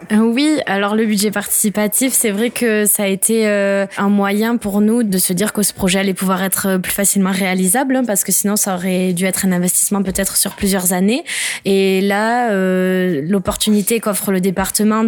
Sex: female